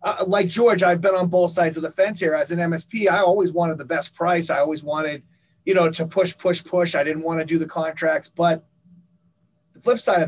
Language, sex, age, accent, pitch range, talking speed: English, male, 30-49, American, 160-185 Hz, 245 wpm